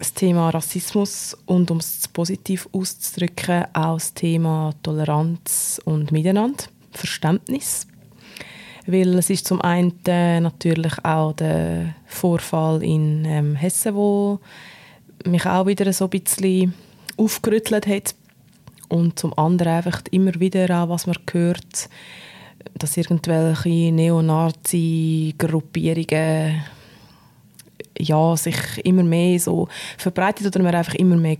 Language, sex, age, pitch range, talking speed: German, female, 20-39, 160-185 Hz, 115 wpm